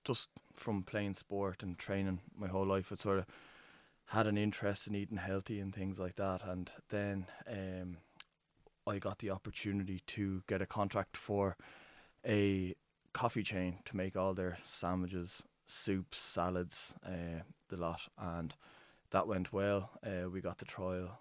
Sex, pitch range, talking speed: male, 90-100 Hz, 160 wpm